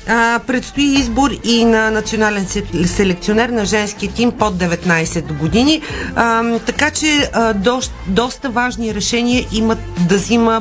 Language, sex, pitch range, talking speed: Bulgarian, female, 195-235 Hz, 120 wpm